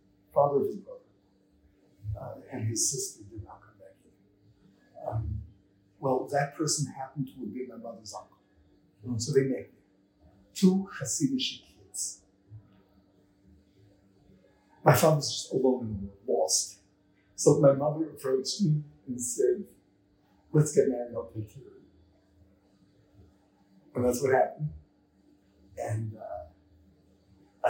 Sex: male